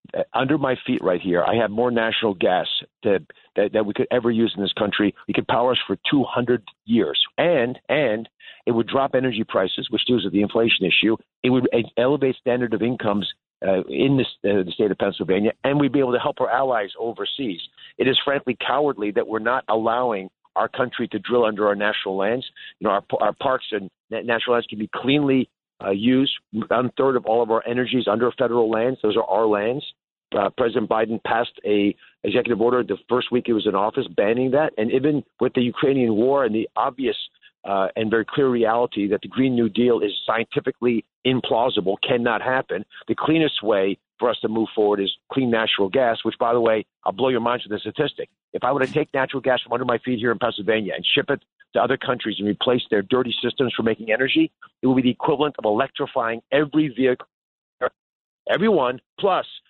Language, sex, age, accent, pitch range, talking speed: English, male, 50-69, American, 110-130 Hz, 210 wpm